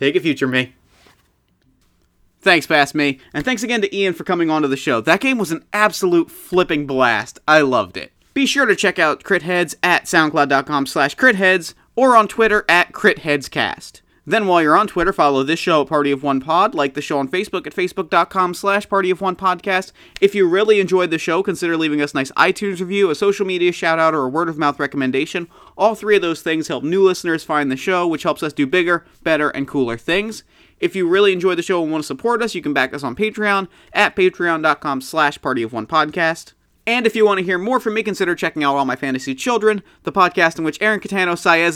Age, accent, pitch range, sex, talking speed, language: 30-49, American, 150-195 Hz, male, 215 wpm, English